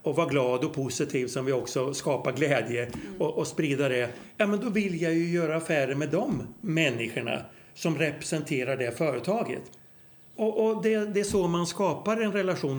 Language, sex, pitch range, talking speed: Swedish, male, 135-180 Hz, 185 wpm